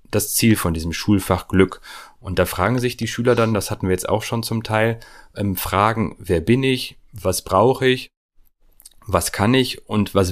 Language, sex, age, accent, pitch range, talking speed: German, male, 30-49, German, 90-110 Hz, 200 wpm